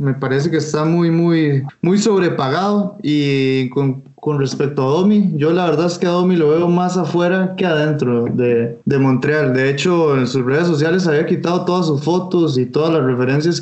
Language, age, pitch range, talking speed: Spanish, 20-39, 135-180 Hz, 200 wpm